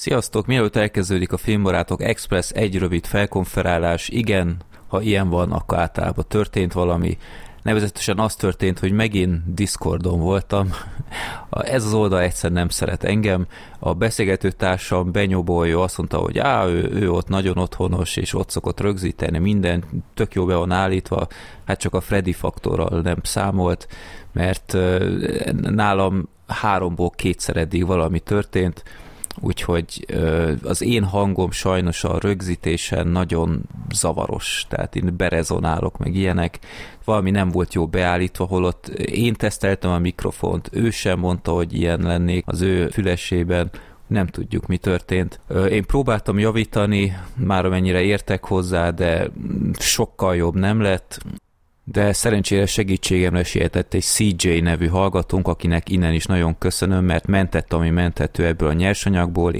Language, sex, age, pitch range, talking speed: Hungarian, male, 30-49, 85-100 Hz, 135 wpm